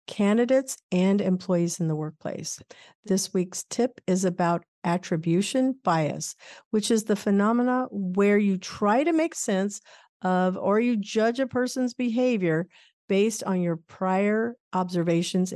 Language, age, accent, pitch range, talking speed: English, 50-69, American, 175-235 Hz, 135 wpm